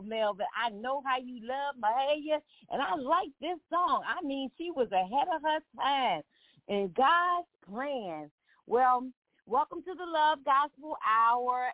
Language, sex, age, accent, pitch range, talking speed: English, female, 40-59, American, 210-290 Hz, 155 wpm